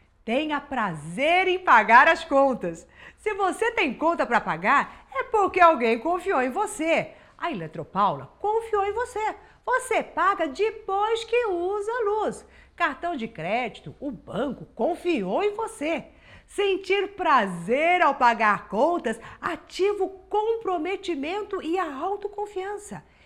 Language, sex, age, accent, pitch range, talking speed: Portuguese, female, 50-69, Brazilian, 275-395 Hz, 125 wpm